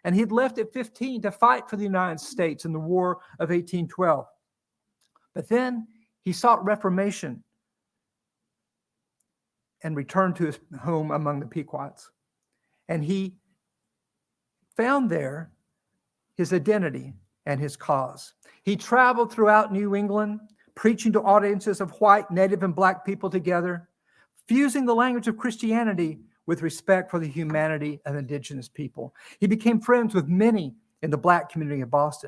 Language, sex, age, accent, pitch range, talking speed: English, male, 50-69, American, 165-220 Hz, 145 wpm